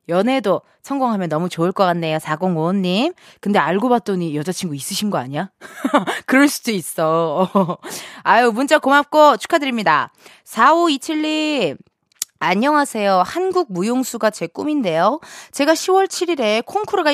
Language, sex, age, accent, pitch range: Korean, female, 20-39, native, 190-305 Hz